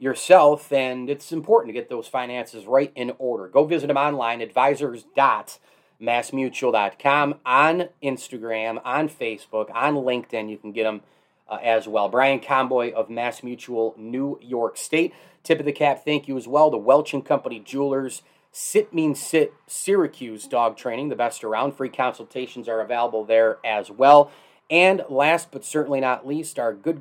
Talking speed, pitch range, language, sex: 160 wpm, 125-150 Hz, English, male